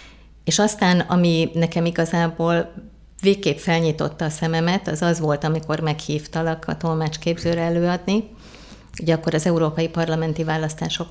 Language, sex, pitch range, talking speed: Hungarian, female, 150-170 Hz, 125 wpm